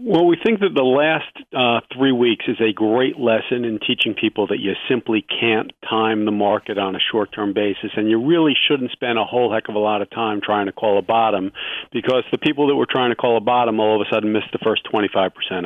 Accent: American